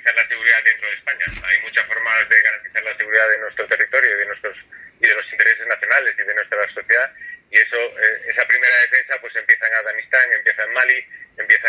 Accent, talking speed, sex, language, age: Spanish, 190 wpm, male, Spanish, 30-49